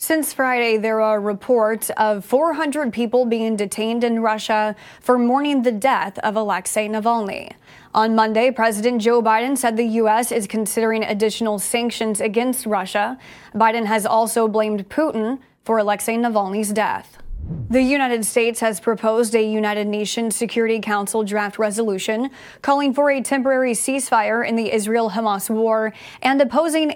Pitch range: 220-255 Hz